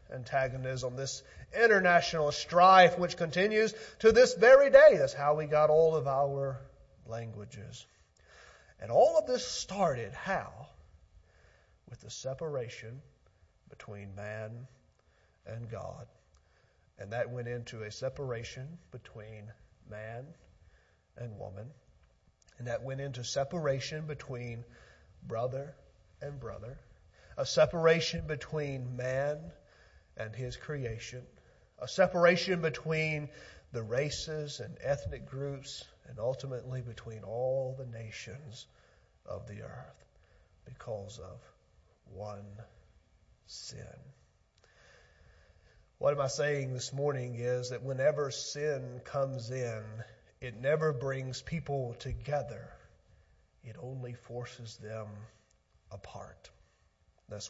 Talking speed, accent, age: 105 wpm, American, 40-59